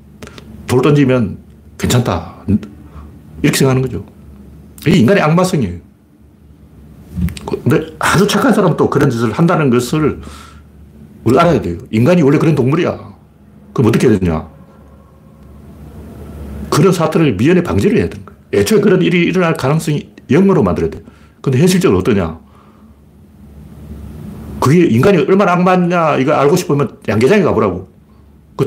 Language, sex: Korean, male